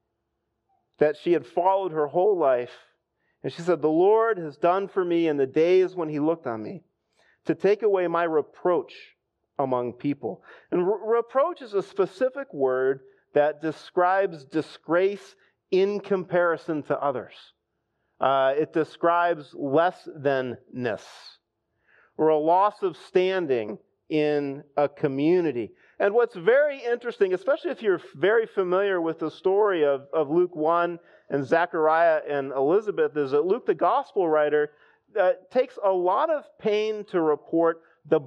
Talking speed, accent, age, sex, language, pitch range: 145 wpm, American, 40-59, male, English, 150-215 Hz